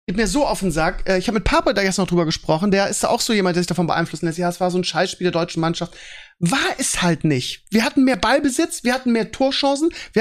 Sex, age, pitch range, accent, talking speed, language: male, 40-59, 200-260 Hz, German, 275 wpm, German